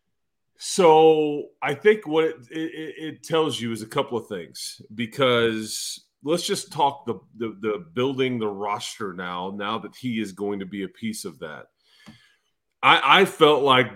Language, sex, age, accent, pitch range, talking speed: English, male, 40-59, American, 110-140 Hz, 170 wpm